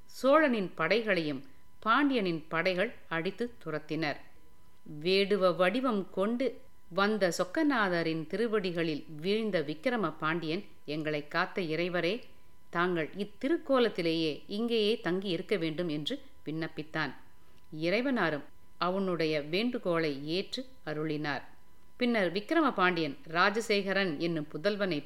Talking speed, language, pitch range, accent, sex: 85 wpm, Tamil, 160-215 Hz, native, female